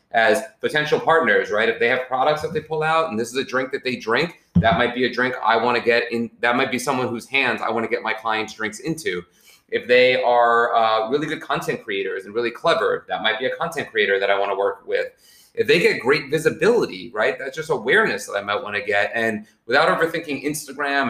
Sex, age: male, 30-49